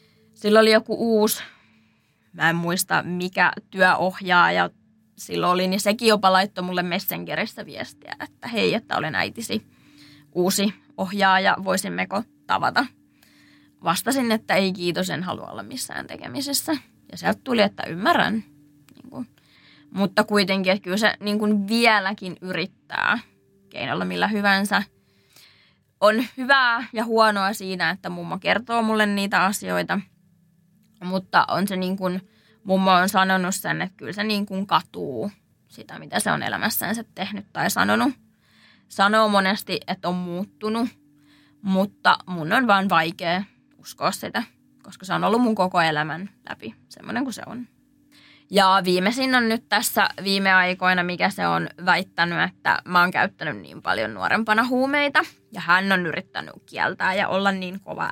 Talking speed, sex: 145 wpm, female